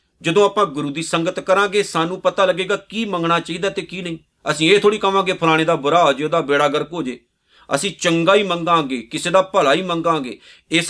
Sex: male